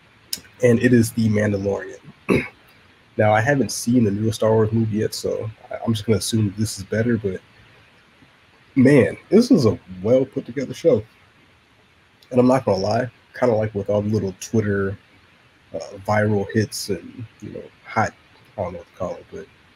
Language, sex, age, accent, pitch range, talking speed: English, male, 30-49, American, 100-115 Hz, 180 wpm